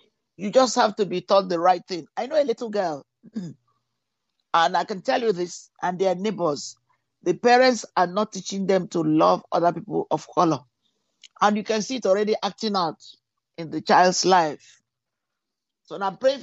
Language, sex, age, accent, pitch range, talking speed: English, male, 50-69, Nigerian, 175-225 Hz, 185 wpm